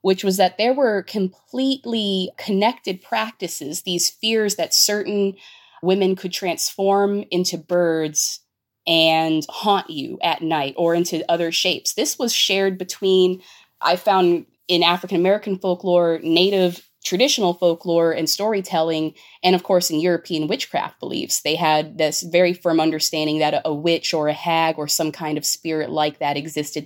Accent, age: American, 20-39